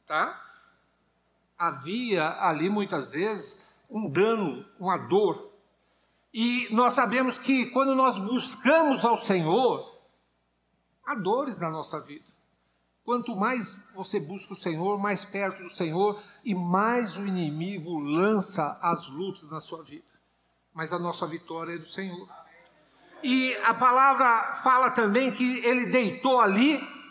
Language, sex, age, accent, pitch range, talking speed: Portuguese, male, 60-79, Brazilian, 175-255 Hz, 130 wpm